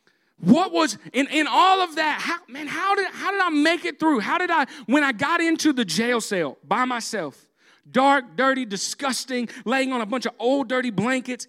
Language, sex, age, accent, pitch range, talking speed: English, male, 40-59, American, 165-260 Hz, 200 wpm